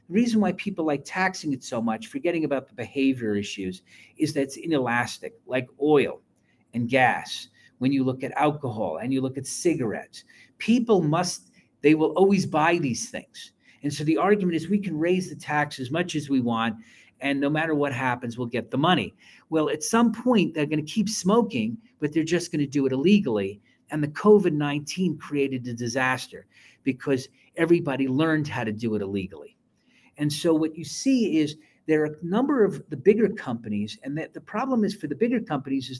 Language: English